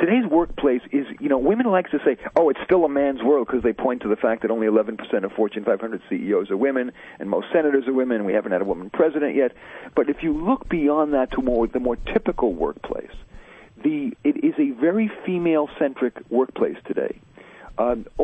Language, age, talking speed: English, 50-69, 205 wpm